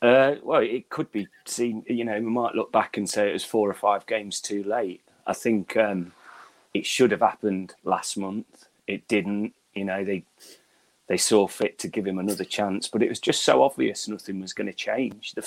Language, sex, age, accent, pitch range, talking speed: English, male, 30-49, British, 95-110 Hz, 215 wpm